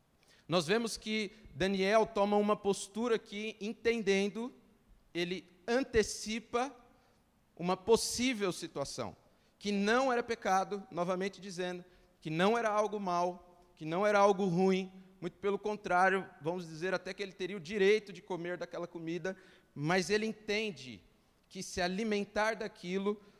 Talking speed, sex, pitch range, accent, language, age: 135 wpm, male, 180-210 Hz, Brazilian, Portuguese, 40-59